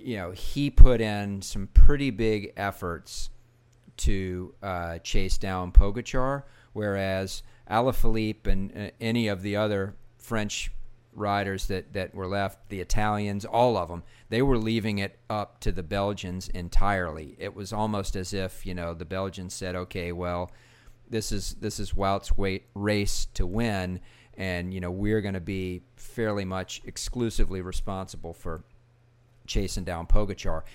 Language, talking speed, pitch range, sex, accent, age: English, 155 wpm, 90-115 Hz, male, American, 40-59